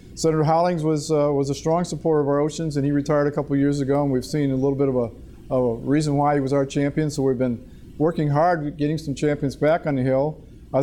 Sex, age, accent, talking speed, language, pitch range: male, 50-69, American, 255 wpm, English, 130-155 Hz